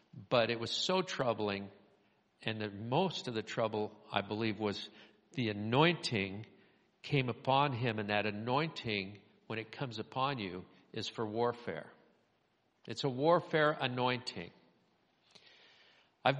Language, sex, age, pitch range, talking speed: English, male, 50-69, 115-155 Hz, 130 wpm